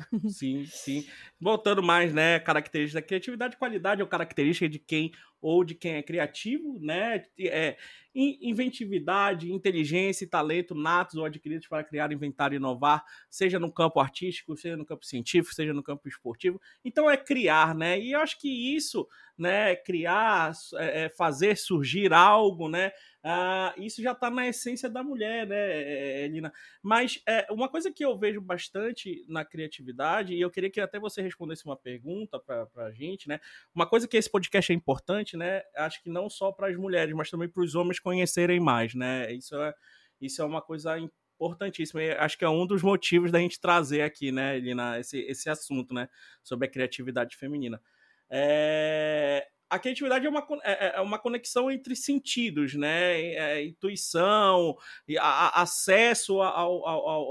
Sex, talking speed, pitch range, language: male, 175 wpm, 155-205 Hz, Portuguese